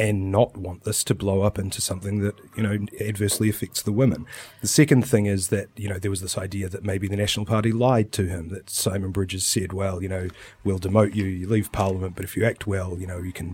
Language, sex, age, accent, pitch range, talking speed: English, male, 30-49, Australian, 95-115 Hz, 255 wpm